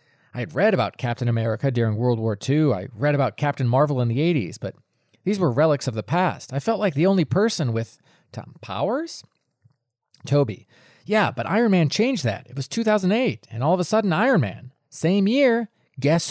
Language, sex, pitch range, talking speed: English, male, 120-175 Hz, 200 wpm